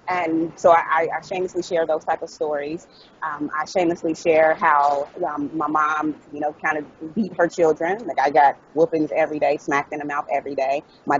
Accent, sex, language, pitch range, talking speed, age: American, female, English, 145-170 Hz, 210 wpm, 30-49